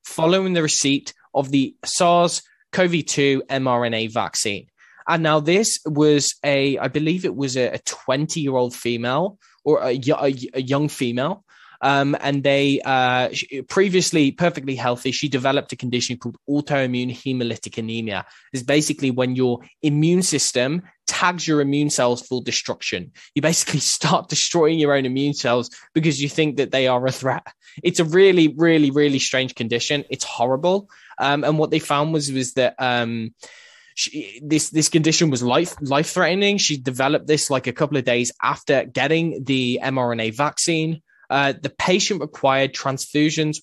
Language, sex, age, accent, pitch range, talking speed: English, male, 10-29, British, 130-160 Hz, 155 wpm